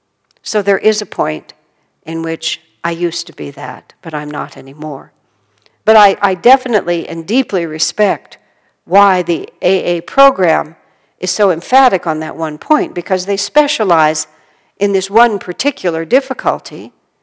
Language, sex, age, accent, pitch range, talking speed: English, female, 60-79, American, 180-245 Hz, 145 wpm